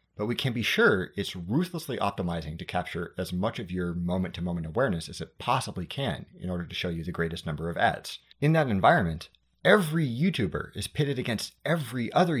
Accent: American